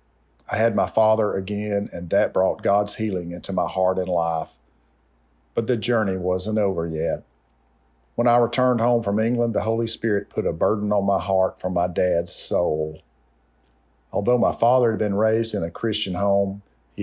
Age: 50-69